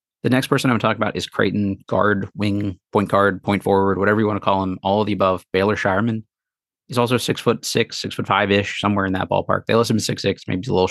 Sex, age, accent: male, 30-49, American